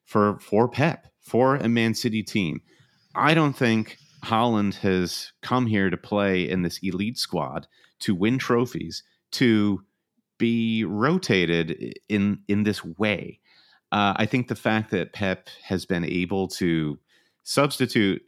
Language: English